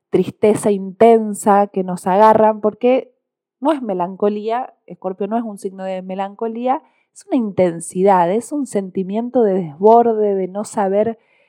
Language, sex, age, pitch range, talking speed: Spanish, female, 20-39, 190-230 Hz, 140 wpm